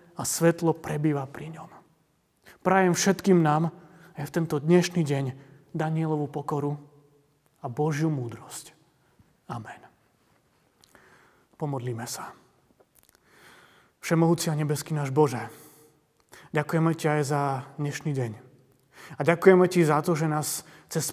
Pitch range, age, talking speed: 145-175 Hz, 30-49, 115 wpm